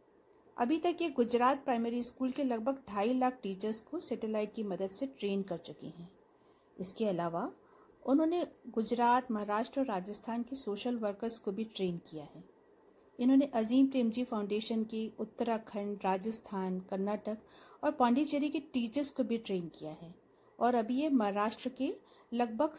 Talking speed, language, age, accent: 155 wpm, Hindi, 50-69, native